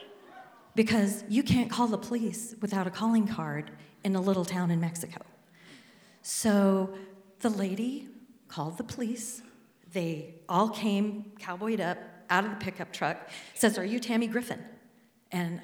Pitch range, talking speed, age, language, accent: 160-220 Hz, 145 wpm, 40-59, English, American